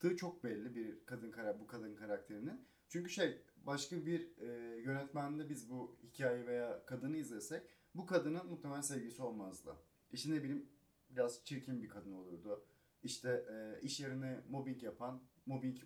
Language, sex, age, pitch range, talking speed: Turkish, male, 30-49, 125-160 Hz, 150 wpm